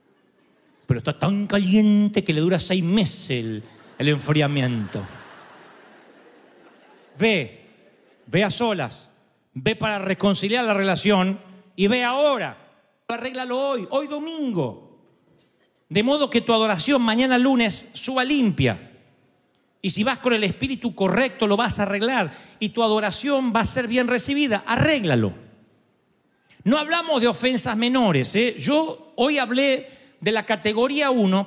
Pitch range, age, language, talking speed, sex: 190-265 Hz, 40-59, Spanish, 130 wpm, male